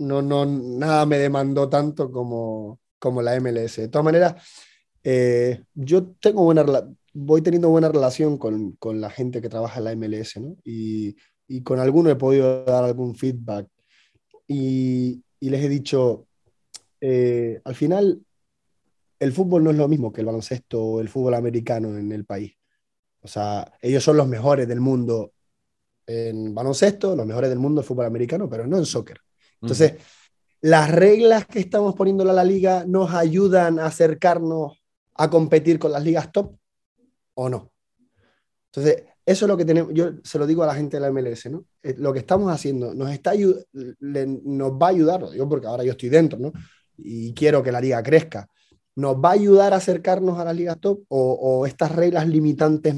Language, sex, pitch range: Spanish, male, 125-165 Hz